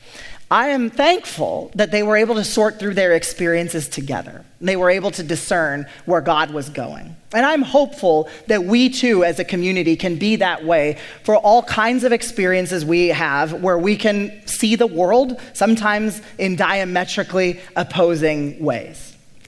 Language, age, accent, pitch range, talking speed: English, 30-49, American, 165-210 Hz, 165 wpm